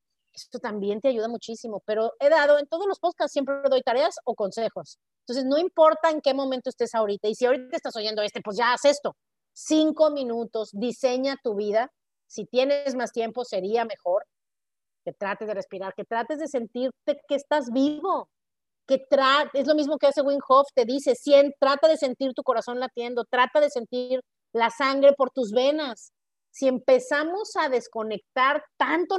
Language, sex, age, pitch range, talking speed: Spanish, female, 40-59, 220-280 Hz, 180 wpm